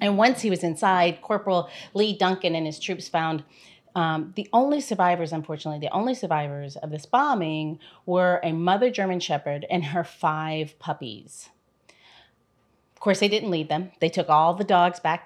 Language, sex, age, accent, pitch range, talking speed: English, female, 30-49, American, 165-215 Hz, 175 wpm